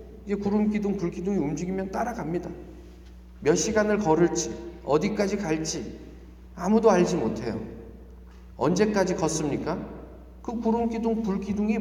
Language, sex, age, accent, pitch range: Korean, male, 40-59, native, 175-230 Hz